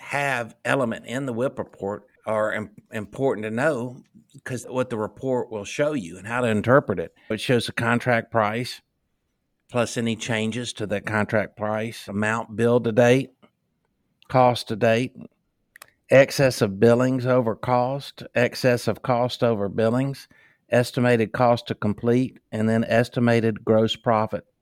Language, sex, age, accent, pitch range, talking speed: English, male, 60-79, American, 105-125 Hz, 145 wpm